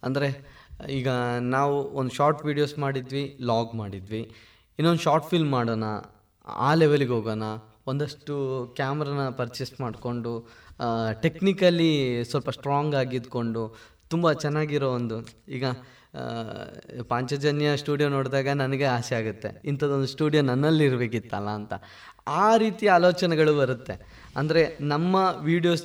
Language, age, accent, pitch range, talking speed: Kannada, 20-39, native, 125-170 Hz, 105 wpm